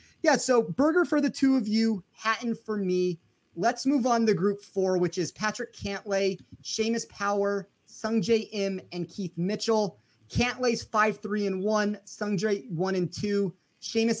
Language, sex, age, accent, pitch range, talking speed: English, male, 30-49, American, 170-215 Hz, 160 wpm